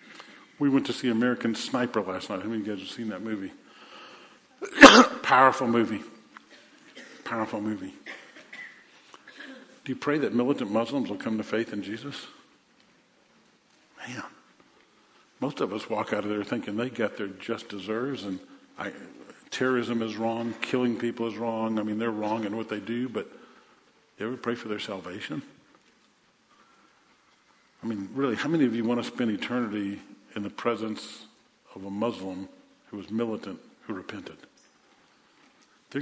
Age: 50-69